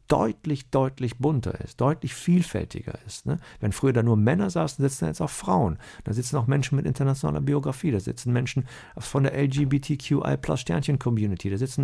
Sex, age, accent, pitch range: male, 50-69, German, 95-135 Hz